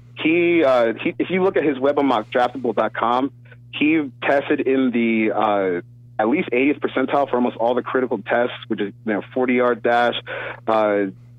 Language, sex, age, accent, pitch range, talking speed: English, male, 30-49, American, 115-130 Hz, 180 wpm